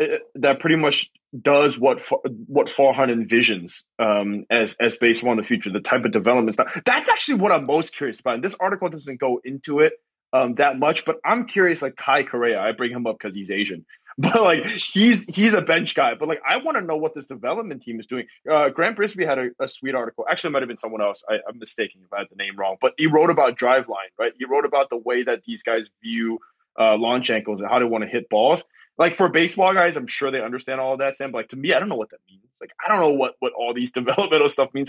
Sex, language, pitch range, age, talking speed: male, English, 115-160 Hz, 20-39, 260 wpm